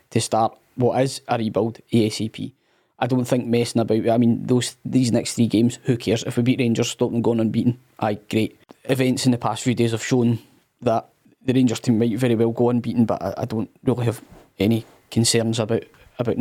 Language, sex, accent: English, male, British